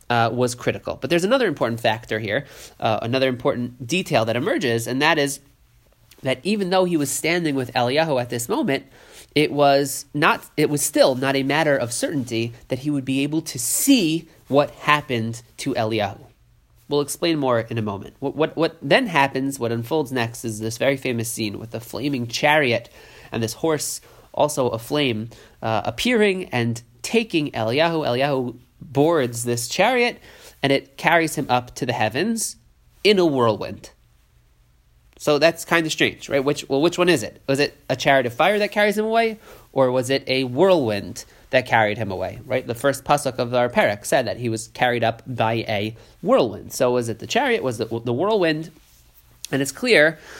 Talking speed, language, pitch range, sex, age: 190 wpm, English, 115-150 Hz, male, 30-49